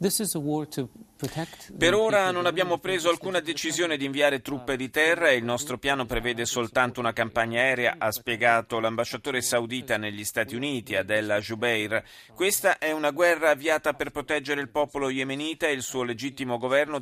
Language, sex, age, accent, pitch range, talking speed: Italian, male, 40-59, native, 115-145 Hz, 160 wpm